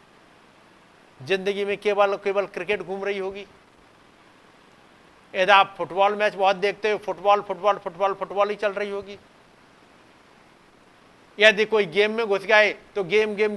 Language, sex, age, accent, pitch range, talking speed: Hindi, male, 50-69, native, 200-250 Hz, 140 wpm